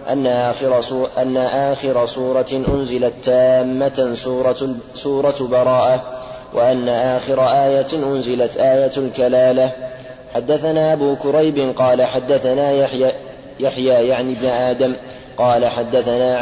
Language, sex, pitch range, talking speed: Arabic, male, 130-140 Hz, 100 wpm